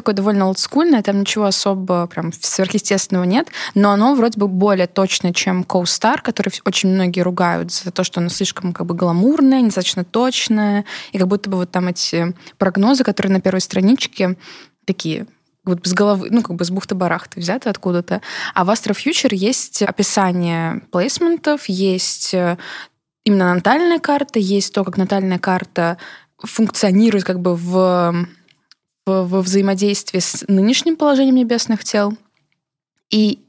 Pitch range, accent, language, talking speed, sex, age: 185-220 Hz, native, Russian, 145 wpm, female, 20-39